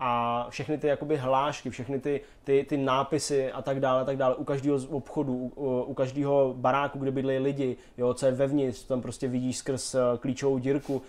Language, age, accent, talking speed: Czech, 20-39, native, 205 wpm